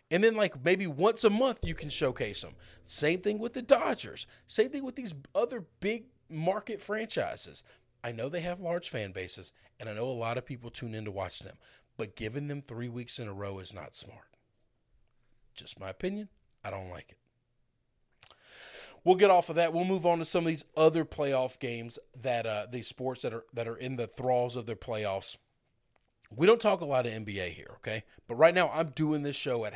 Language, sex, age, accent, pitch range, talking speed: English, male, 40-59, American, 110-160 Hz, 215 wpm